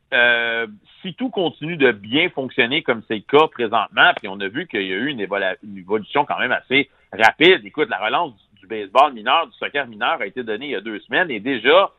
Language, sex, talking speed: French, male, 235 wpm